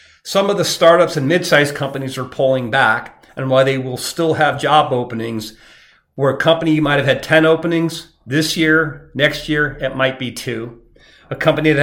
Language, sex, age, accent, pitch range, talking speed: English, male, 40-59, American, 125-155 Hz, 190 wpm